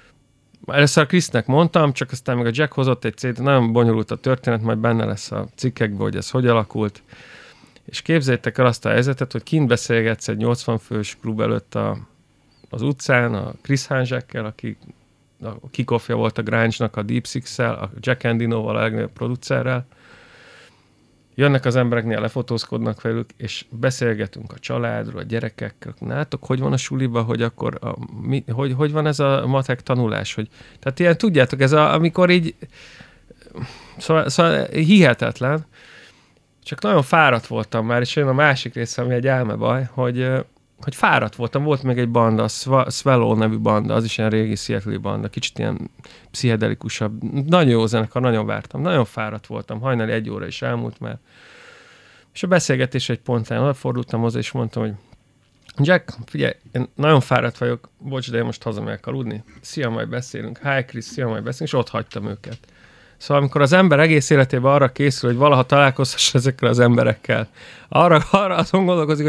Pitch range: 115-140 Hz